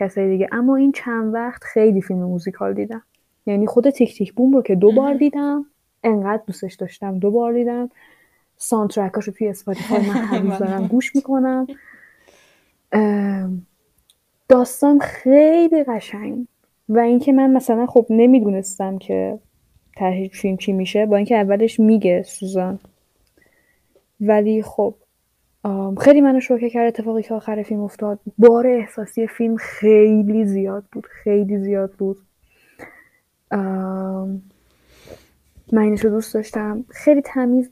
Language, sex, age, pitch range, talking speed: Persian, female, 10-29, 195-235 Hz, 125 wpm